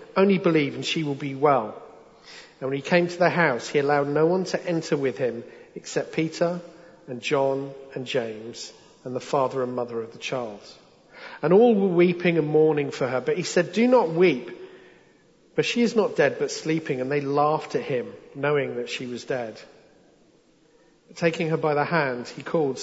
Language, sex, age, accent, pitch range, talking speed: English, male, 40-59, British, 135-185 Hz, 195 wpm